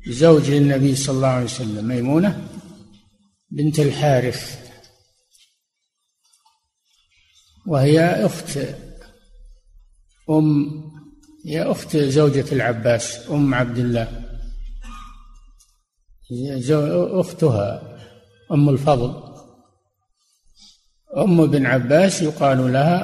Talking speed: 70 wpm